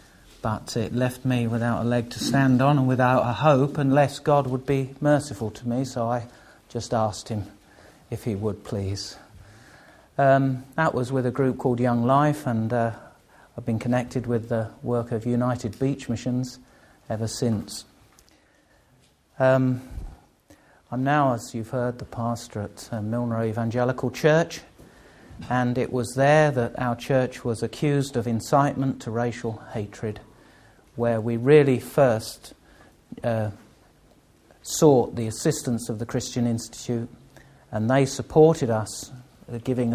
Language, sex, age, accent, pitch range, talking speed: English, male, 50-69, British, 115-135 Hz, 145 wpm